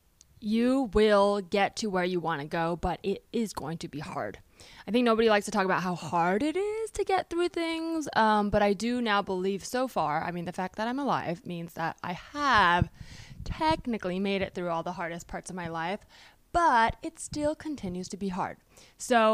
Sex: female